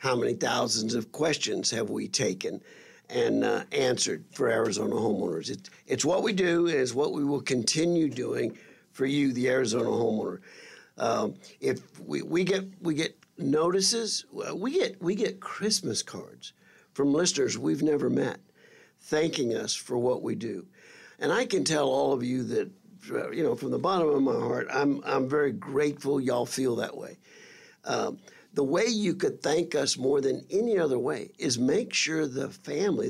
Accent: American